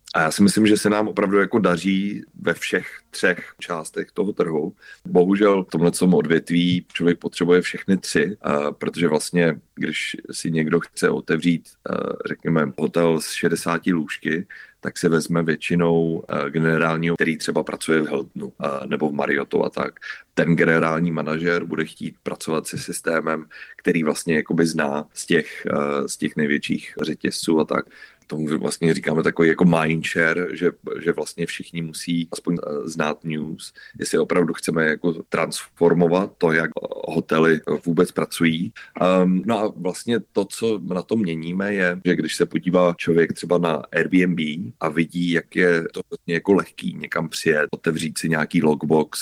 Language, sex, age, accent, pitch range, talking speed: Czech, male, 30-49, native, 80-90 Hz, 150 wpm